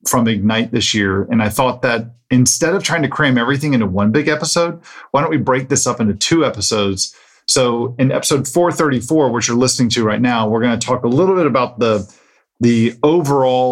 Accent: American